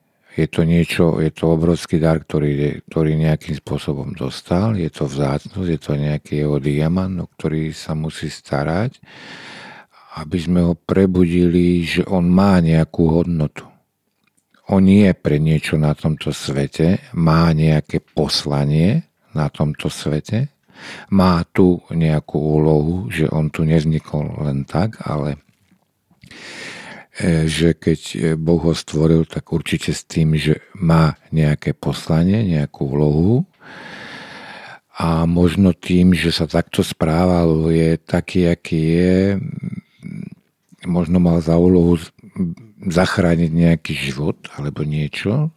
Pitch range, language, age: 80-90 Hz, Slovak, 50-69